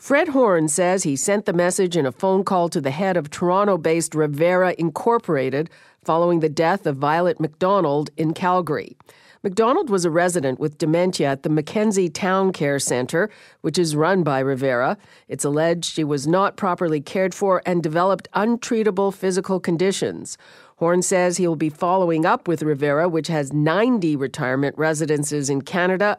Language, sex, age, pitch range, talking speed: English, female, 50-69, 150-190 Hz, 165 wpm